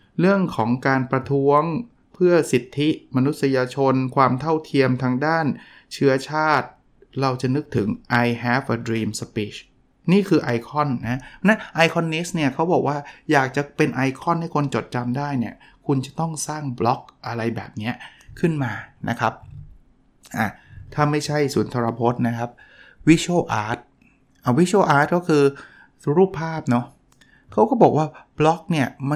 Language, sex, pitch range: Thai, male, 130-175 Hz